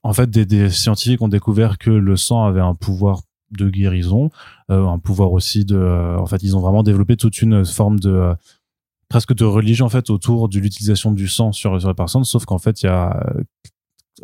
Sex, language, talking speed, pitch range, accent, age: male, French, 225 wpm, 95-115 Hz, French, 20-39